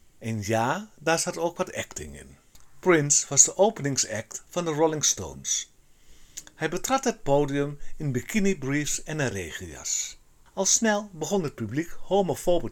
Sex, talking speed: male, 150 wpm